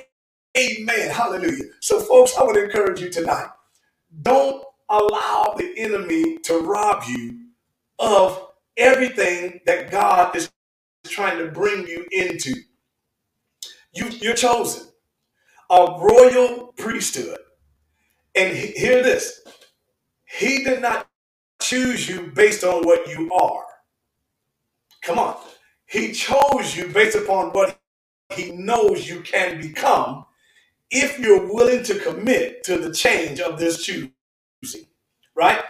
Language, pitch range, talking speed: English, 185-275 Hz, 115 wpm